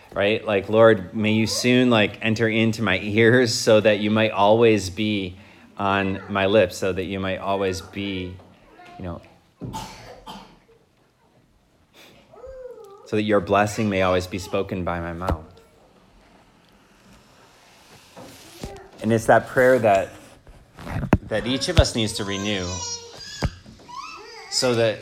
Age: 30-49